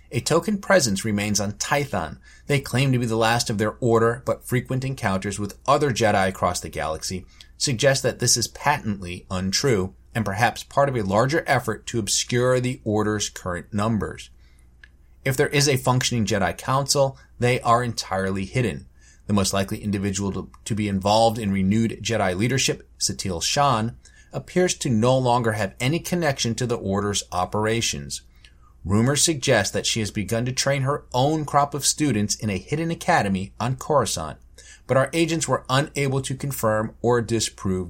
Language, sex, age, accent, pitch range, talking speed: English, male, 30-49, American, 95-130 Hz, 170 wpm